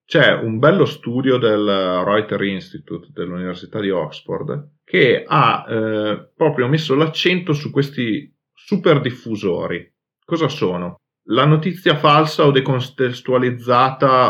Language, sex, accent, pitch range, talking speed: Italian, male, native, 100-140 Hz, 115 wpm